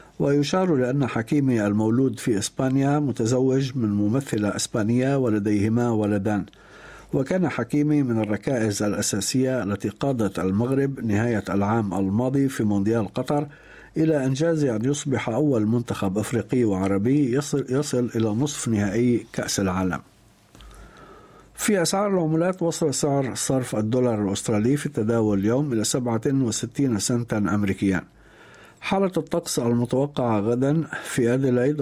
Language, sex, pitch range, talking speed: Arabic, male, 105-140 Hz, 115 wpm